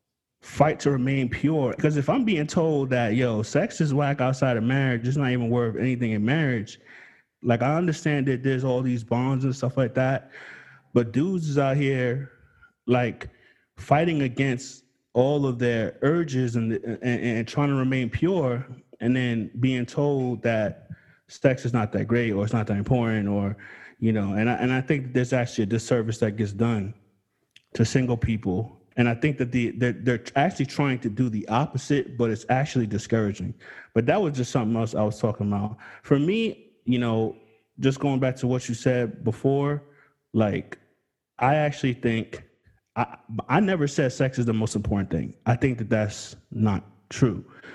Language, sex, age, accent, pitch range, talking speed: English, male, 20-39, American, 110-135 Hz, 180 wpm